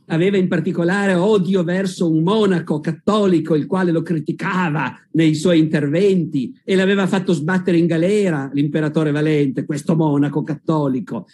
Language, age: Italian, 50-69